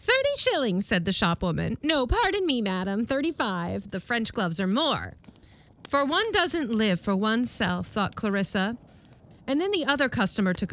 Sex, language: female, English